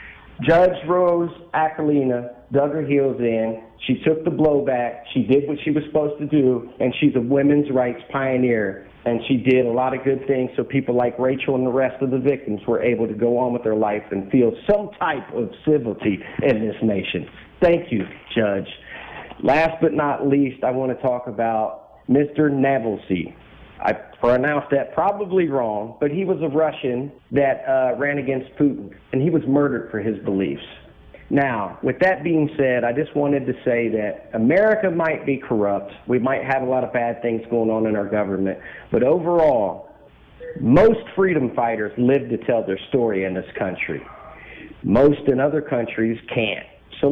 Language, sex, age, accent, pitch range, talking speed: English, male, 40-59, American, 115-150 Hz, 180 wpm